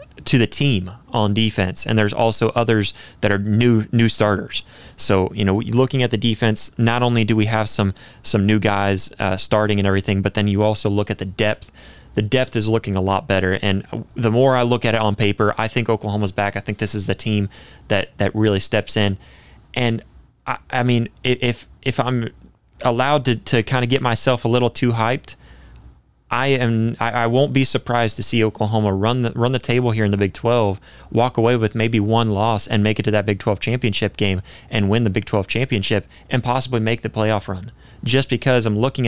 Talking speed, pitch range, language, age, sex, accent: 215 wpm, 100-120 Hz, English, 20-39, male, American